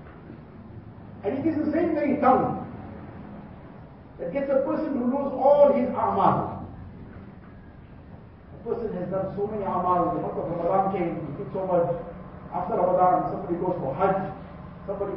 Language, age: English, 50-69